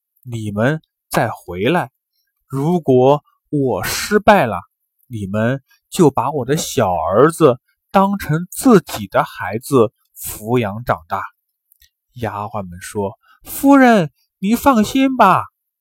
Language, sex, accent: Chinese, male, native